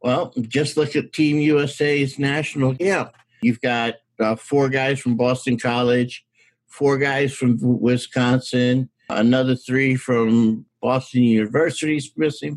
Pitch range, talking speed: 125-160 Hz, 125 wpm